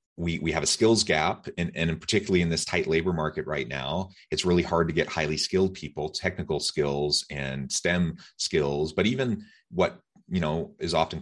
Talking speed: 195 wpm